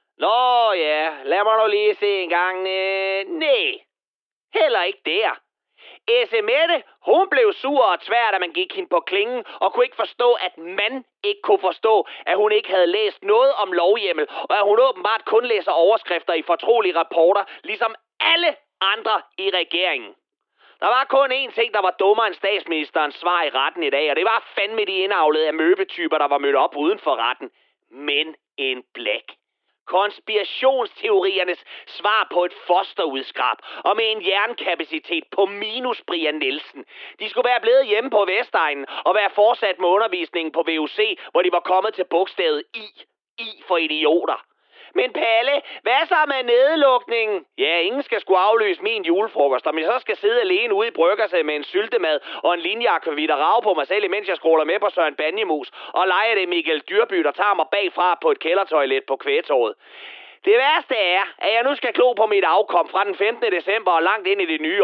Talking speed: 185 wpm